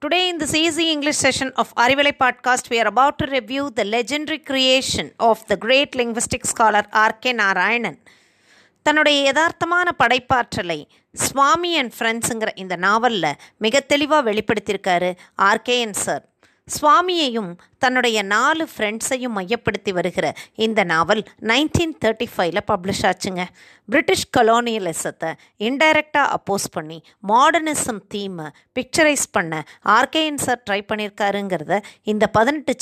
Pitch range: 190-260 Hz